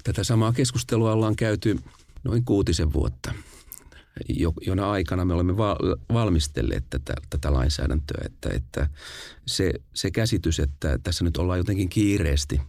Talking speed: 130 wpm